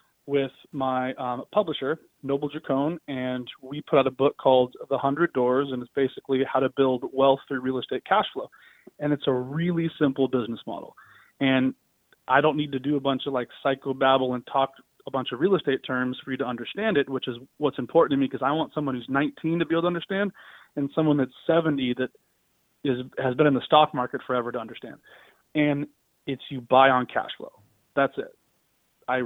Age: 30-49